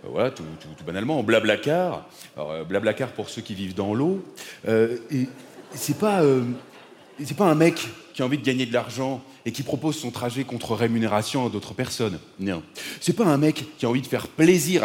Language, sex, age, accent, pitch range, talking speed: French, male, 30-49, French, 115-165 Hz, 215 wpm